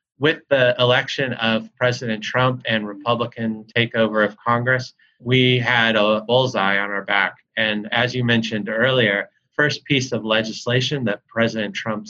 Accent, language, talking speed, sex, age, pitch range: American, English, 150 wpm, male, 30-49, 110-125 Hz